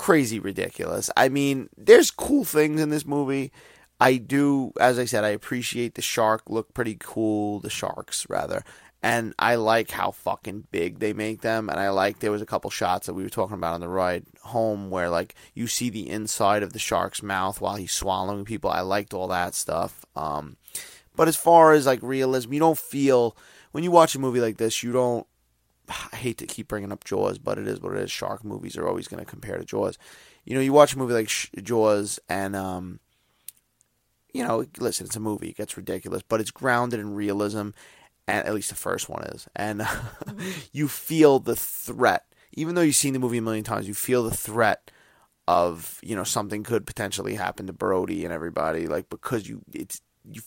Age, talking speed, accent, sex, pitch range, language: 20-39, 210 wpm, American, male, 105-135 Hz, English